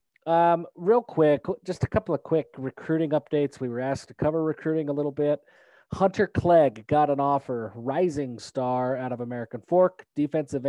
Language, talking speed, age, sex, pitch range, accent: English, 175 wpm, 30-49, male, 130-160 Hz, American